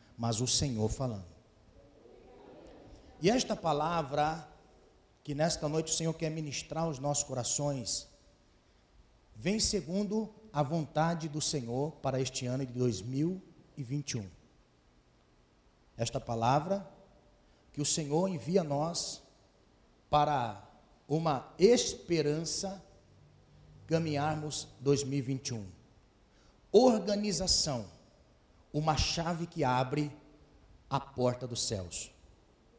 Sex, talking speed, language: male, 90 wpm, Portuguese